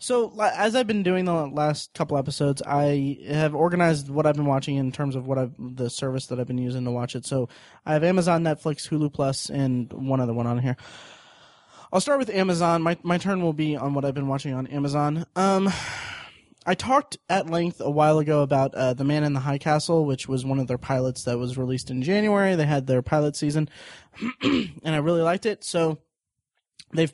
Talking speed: 215 wpm